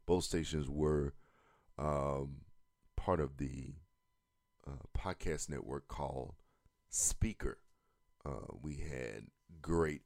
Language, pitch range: English, 70-90 Hz